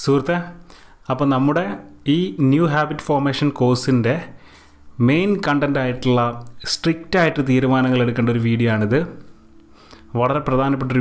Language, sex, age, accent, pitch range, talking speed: Malayalam, male, 30-49, native, 115-145 Hz, 100 wpm